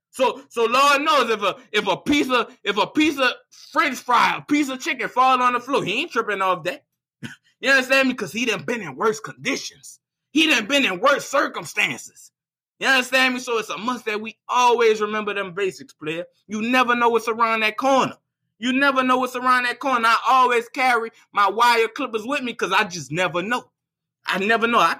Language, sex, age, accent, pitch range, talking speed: English, male, 20-39, American, 205-260 Hz, 215 wpm